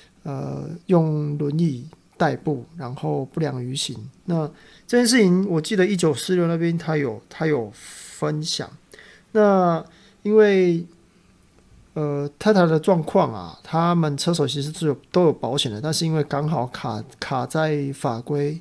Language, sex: Chinese, male